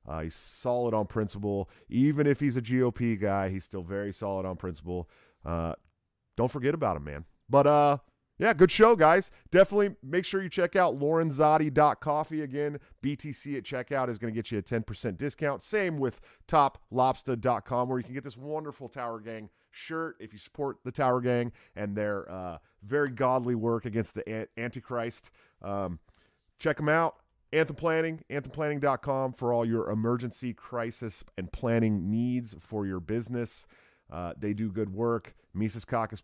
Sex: male